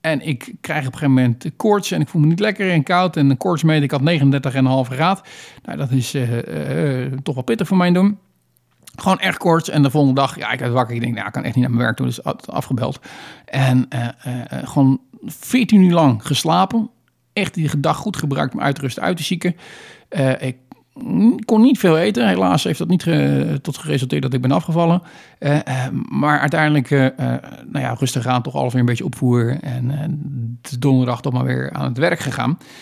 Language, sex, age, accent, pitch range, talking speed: Dutch, male, 50-69, Dutch, 130-160 Hz, 225 wpm